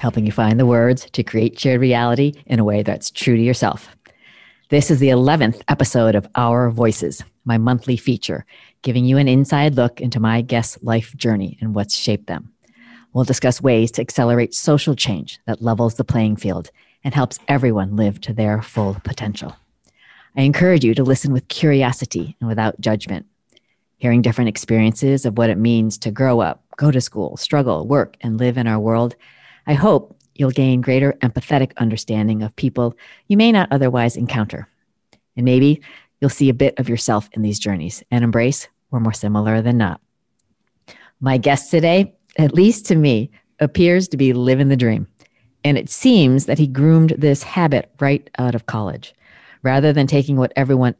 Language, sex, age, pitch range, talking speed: English, female, 40-59, 115-140 Hz, 180 wpm